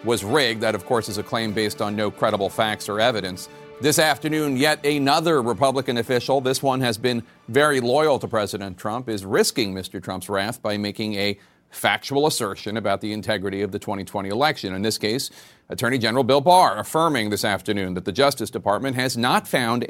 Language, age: English, 40-59